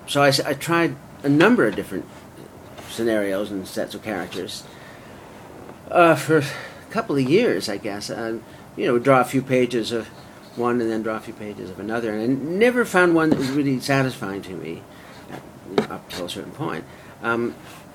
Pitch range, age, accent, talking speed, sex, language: 110-145 Hz, 50-69, American, 190 wpm, male, English